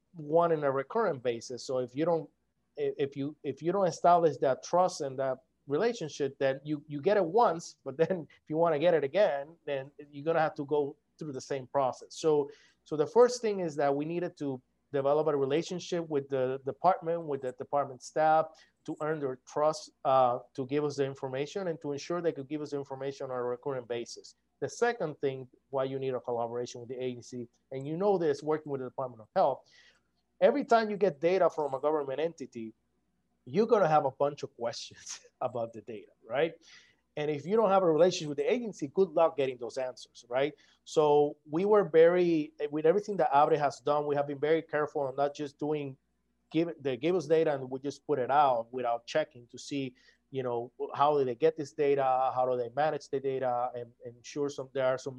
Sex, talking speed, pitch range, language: male, 215 wpm, 130-165 Hz, English